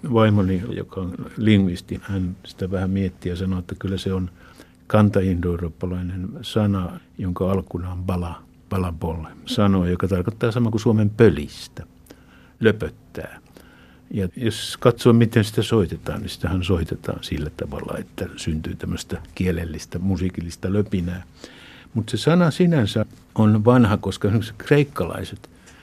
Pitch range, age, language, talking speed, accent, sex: 90-110 Hz, 60-79, Finnish, 125 wpm, native, male